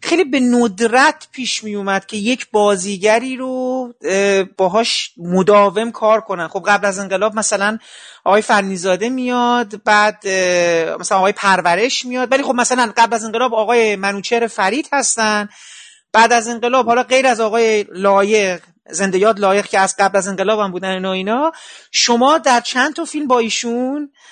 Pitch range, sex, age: 195-250 Hz, male, 40-59